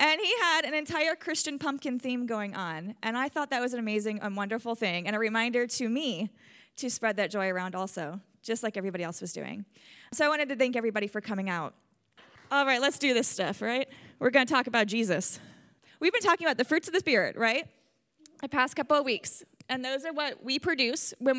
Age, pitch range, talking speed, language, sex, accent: 20-39, 215-285 Hz, 225 wpm, English, female, American